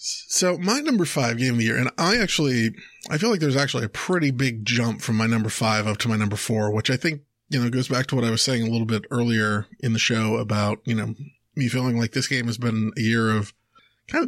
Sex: male